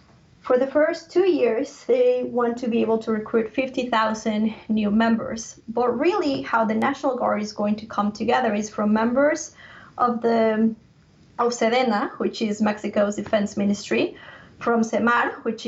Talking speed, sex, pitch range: 155 wpm, female, 215-255 Hz